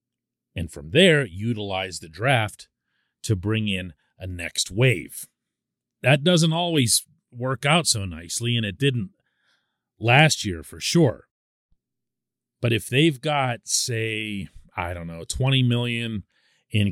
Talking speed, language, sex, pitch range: 130 wpm, English, male, 90-120 Hz